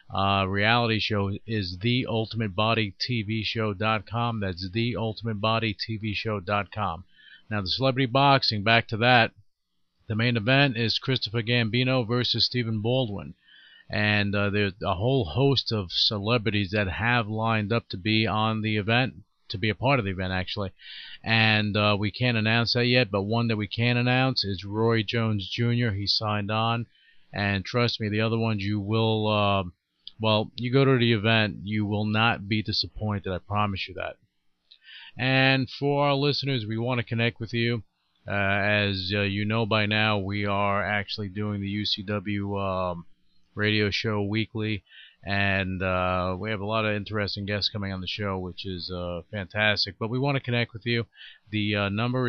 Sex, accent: male, American